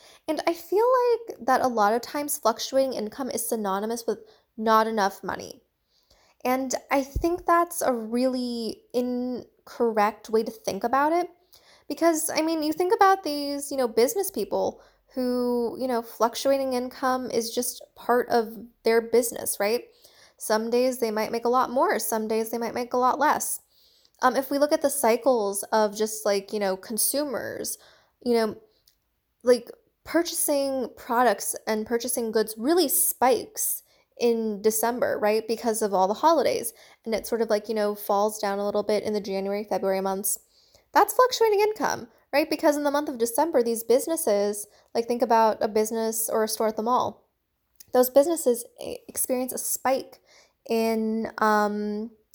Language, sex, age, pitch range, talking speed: English, female, 10-29, 220-280 Hz, 165 wpm